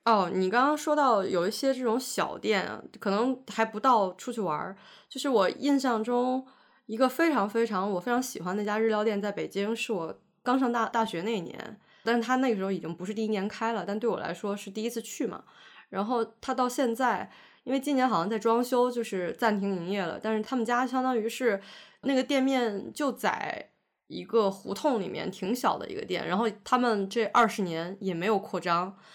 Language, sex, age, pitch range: English, female, 20-39, 200-245 Hz